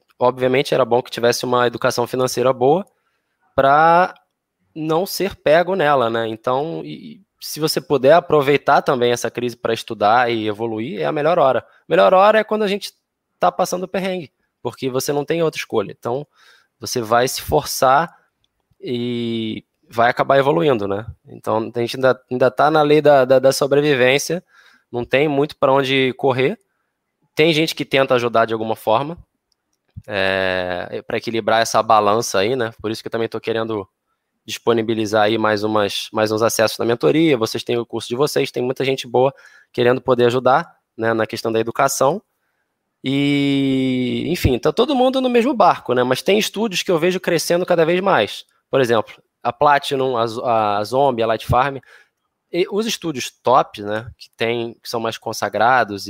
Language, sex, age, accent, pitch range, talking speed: Portuguese, male, 20-39, Brazilian, 115-150 Hz, 170 wpm